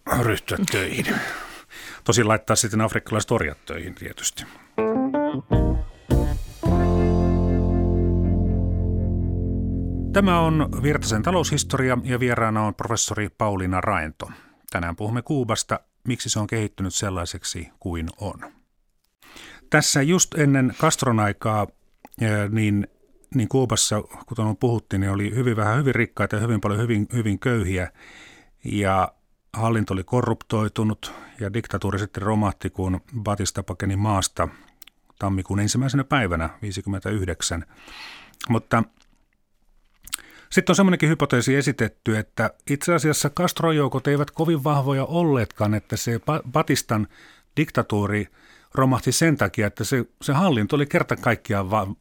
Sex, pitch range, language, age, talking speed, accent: male, 100-130 Hz, Finnish, 40-59, 110 wpm, native